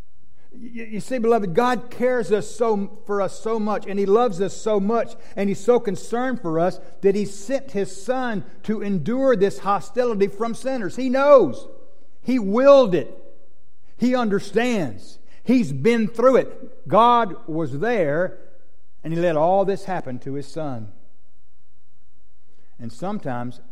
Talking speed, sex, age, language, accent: 150 wpm, male, 60-79, English, American